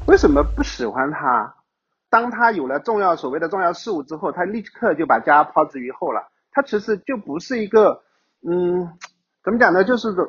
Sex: male